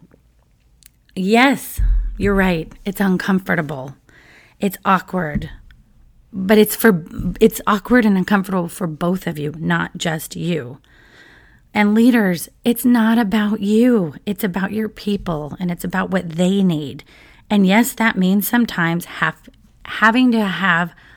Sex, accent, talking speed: female, American, 130 wpm